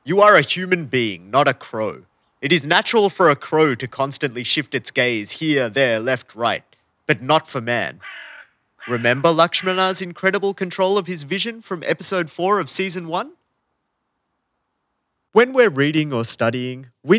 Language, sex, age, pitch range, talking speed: English, male, 30-49, 125-190 Hz, 160 wpm